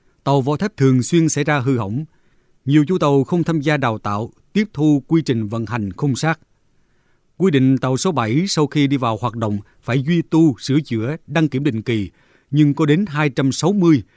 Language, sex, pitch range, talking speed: Vietnamese, male, 120-160 Hz, 210 wpm